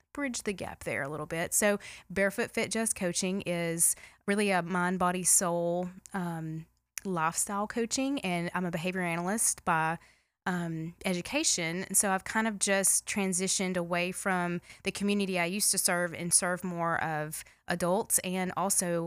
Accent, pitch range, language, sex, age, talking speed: American, 165-205 Hz, English, female, 20-39, 160 wpm